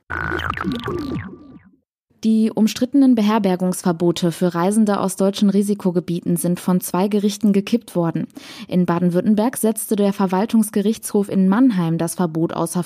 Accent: German